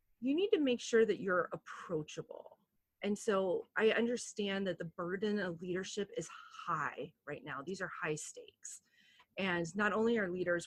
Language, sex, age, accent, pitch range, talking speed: Romanian, female, 30-49, American, 165-230 Hz, 170 wpm